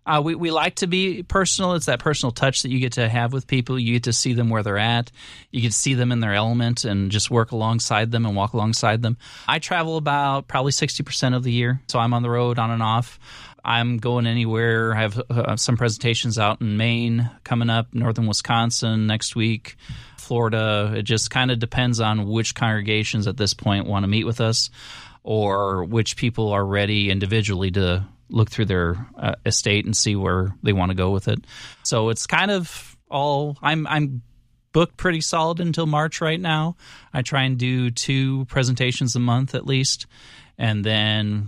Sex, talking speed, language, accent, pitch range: male, 205 wpm, English, American, 110-130 Hz